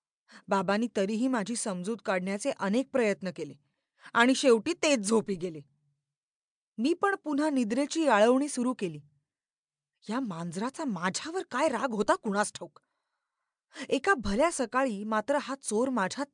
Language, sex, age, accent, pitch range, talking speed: Marathi, female, 20-39, native, 195-300 Hz, 125 wpm